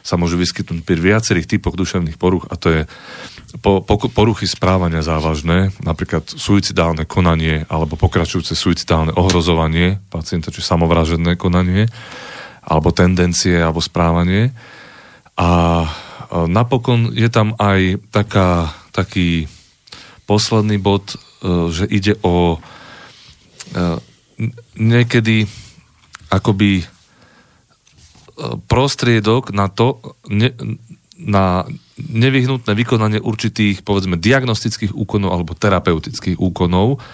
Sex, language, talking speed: male, Slovak, 100 wpm